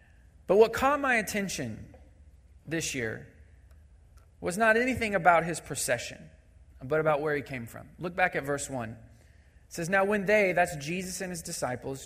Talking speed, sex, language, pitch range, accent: 170 wpm, male, English, 120-165 Hz, American